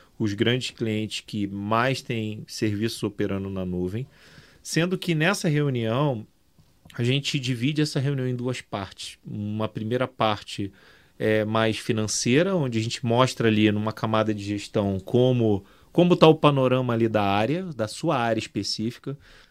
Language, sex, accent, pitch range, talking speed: Portuguese, male, Brazilian, 110-150 Hz, 150 wpm